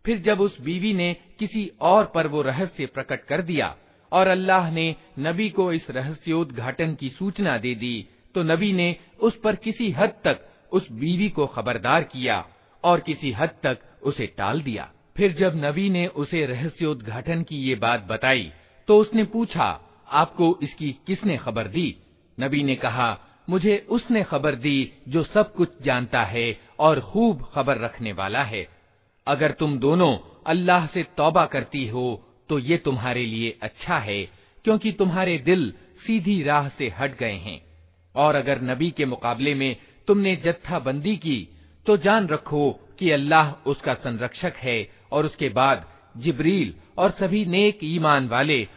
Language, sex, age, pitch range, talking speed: Hindi, male, 50-69, 125-180 Hz, 160 wpm